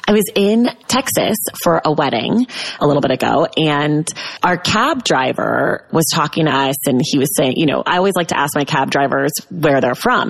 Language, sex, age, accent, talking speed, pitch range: English, female, 20-39, American, 210 wpm, 150-200 Hz